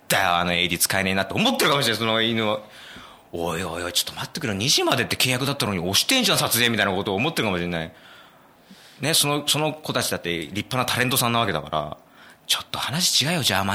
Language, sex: Japanese, male